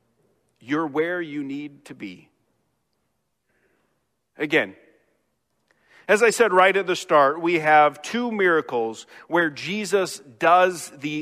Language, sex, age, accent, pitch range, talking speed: English, male, 40-59, American, 140-185 Hz, 120 wpm